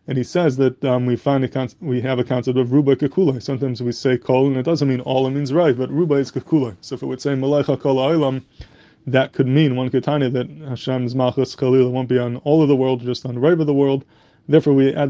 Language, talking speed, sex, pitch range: English, 255 wpm, male, 125-145 Hz